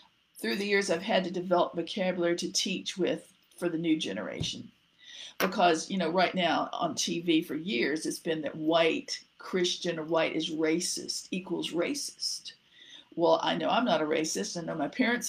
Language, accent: English, American